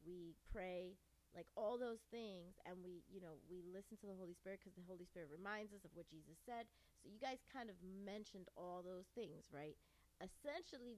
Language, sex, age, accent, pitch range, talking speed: English, female, 30-49, American, 180-230 Hz, 200 wpm